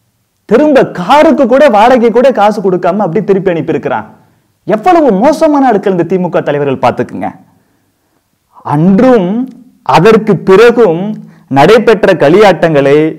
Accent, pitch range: native, 150-215 Hz